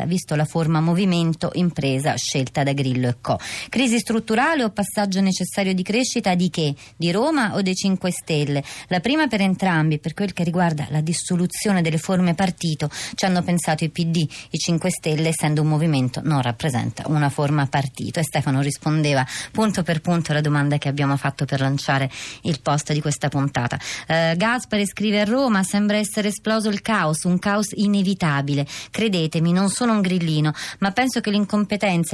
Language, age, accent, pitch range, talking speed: Italian, 30-49, native, 155-200 Hz, 175 wpm